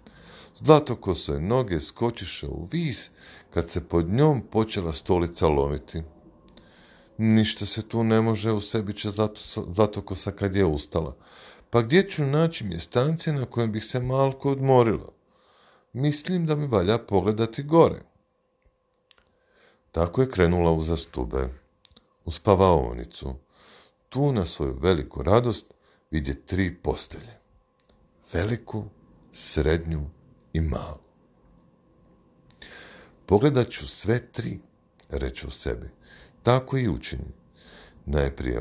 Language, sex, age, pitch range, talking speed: Croatian, male, 50-69, 80-125 Hz, 115 wpm